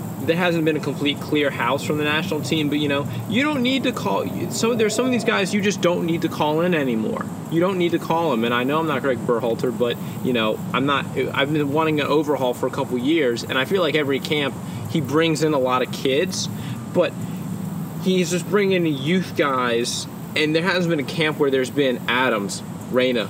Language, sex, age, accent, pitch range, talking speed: English, male, 20-39, American, 125-165 Hz, 235 wpm